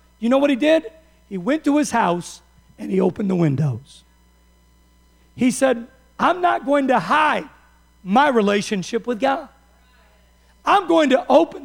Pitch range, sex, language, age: 185-285 Hz, male, English, 50-69